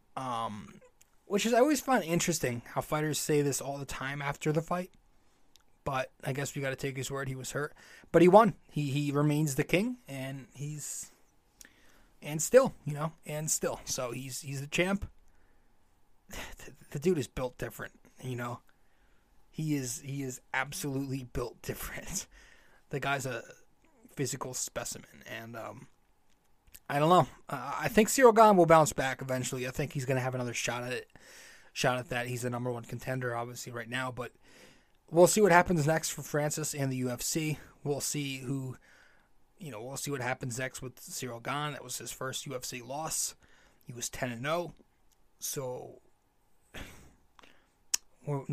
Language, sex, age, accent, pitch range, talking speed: English, male, 20-39, American, 130-155 Hz, 175 wpm